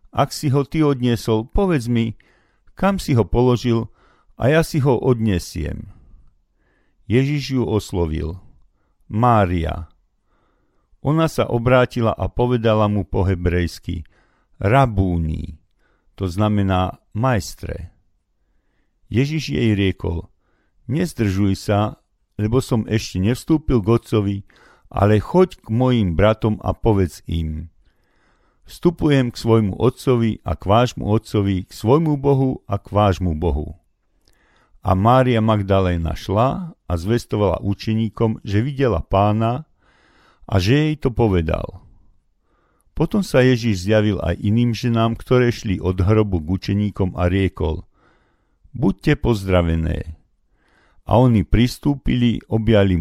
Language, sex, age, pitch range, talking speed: Slovak, male, 50-69, 90-120 Hz, 115 wpm